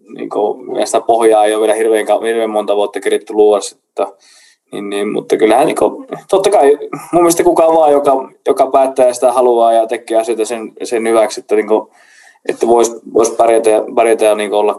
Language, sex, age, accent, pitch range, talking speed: Finnish, male, 20-39, native, 110-145 Hz, 175 wpm